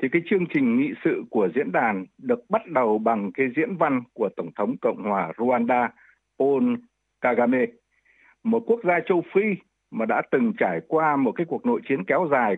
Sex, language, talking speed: male, Vietnamese, 195 wpm